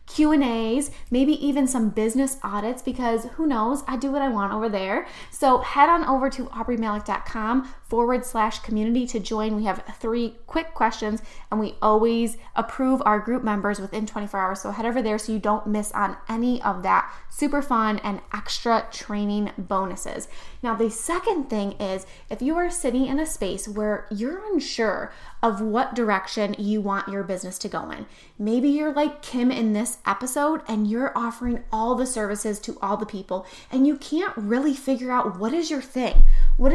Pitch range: 210-265 Hz